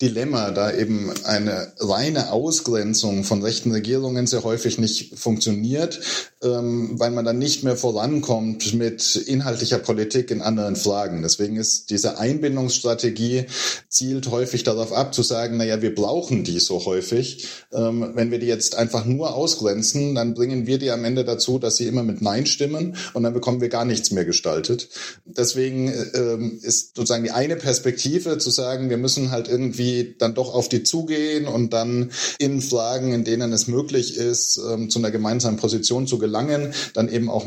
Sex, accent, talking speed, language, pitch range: male, German, 170 wpm, German, 110-125 Hz